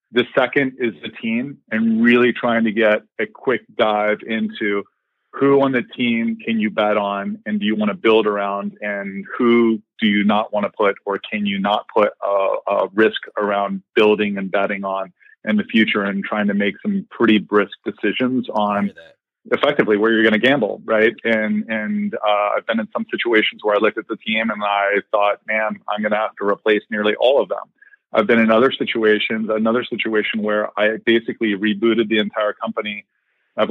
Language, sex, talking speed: English, male, 200 wpm